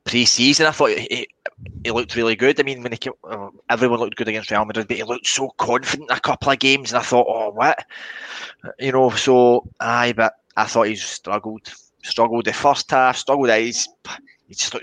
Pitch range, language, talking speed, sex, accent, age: 110-130 Hz, English, 205 wpm, male, British, 20-39